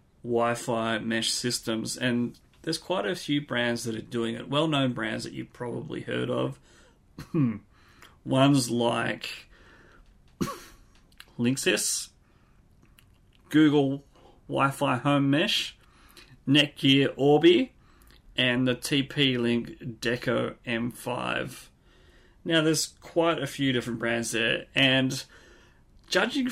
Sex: male